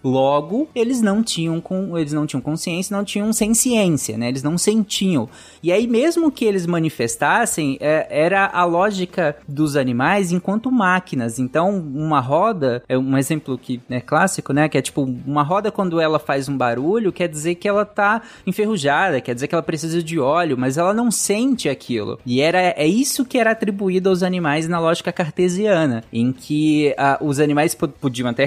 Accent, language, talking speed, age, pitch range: Brazilian, Portuguese, 190 wpm, 20-39, 135-185 Hz